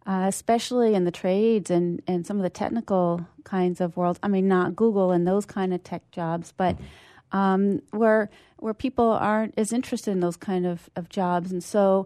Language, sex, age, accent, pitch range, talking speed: English, female, 40-59, American, 180-215 Hz, 200 wpm